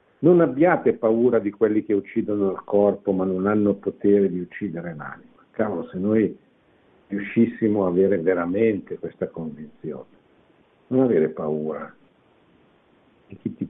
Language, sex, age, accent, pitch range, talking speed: Italian, male, 60-79, native, 100-120 Hz, 135 wpm